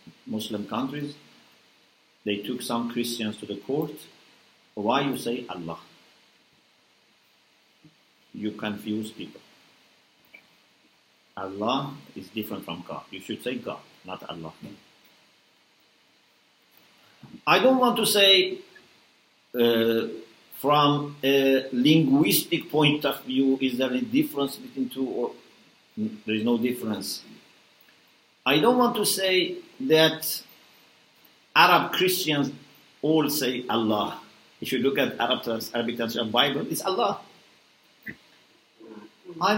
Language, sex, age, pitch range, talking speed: English, male, 50-69, 120-190 Hz, 110 wpm